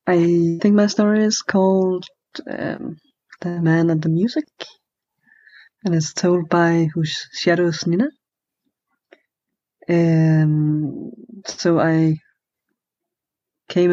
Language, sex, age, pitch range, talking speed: Finnish, female, 20-39, 160-195 Hz, 100 wpm